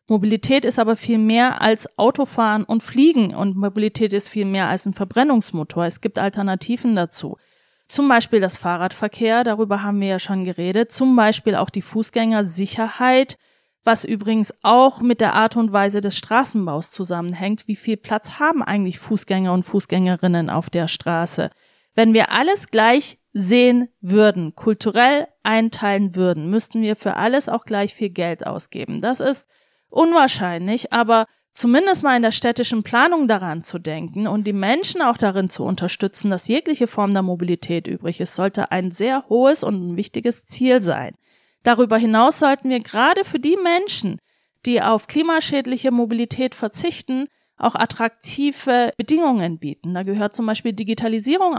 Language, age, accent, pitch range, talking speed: German, 30-49, German, 195-245 Hz, 155 wpm